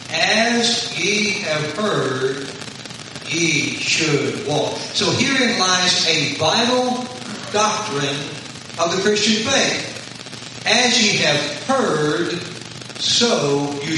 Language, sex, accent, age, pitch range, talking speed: English, male, American, 60-79, 145-215 Hz, 100 wpm